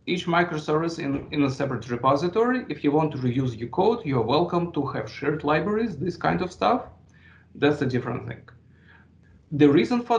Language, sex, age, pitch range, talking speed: English, male, 40-59, 130-170 Hz, 185 wpm